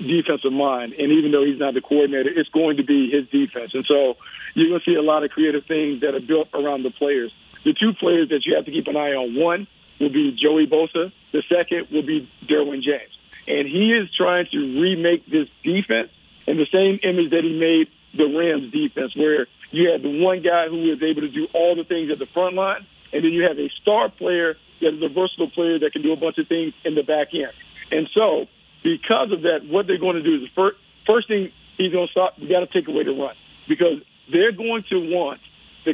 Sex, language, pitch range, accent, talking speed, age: male, English, 155-190 Hz, American, 240 wpm, 50-69